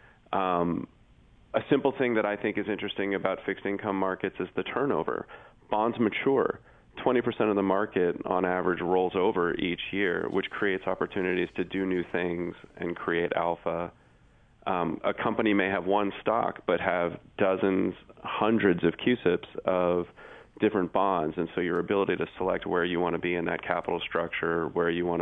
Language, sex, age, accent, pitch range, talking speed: English, male, 30-49, American, 85-105 Hz, 170 wpm